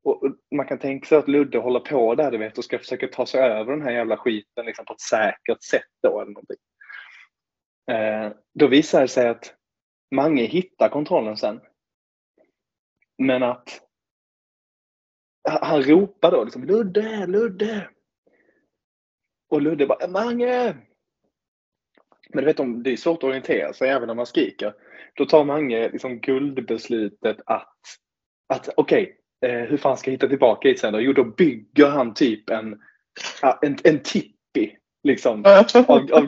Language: Swedish